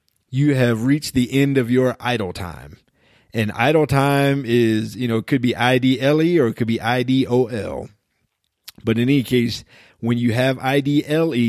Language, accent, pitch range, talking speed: English, American, 105-130 Hz, 165 wpm